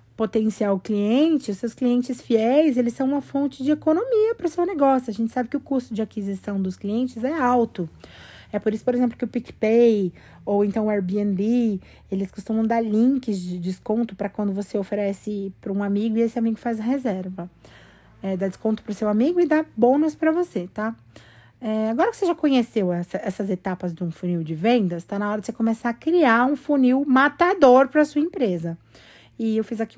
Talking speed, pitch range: 210 wpm, 200-250 Hz